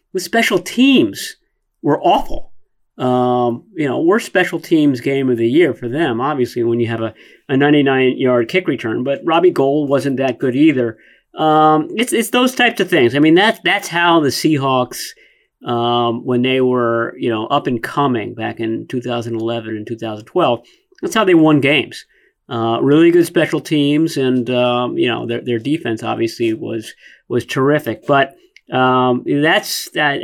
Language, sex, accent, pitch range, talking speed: English, male, American, 125-155 Hz, 180 wpm